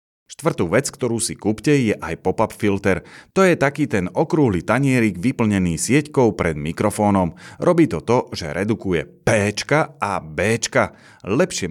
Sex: male